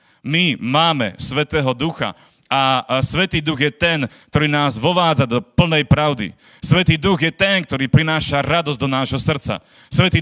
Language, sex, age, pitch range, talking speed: Slovak, male, 40-59, 135-170 Hz, 155 wpm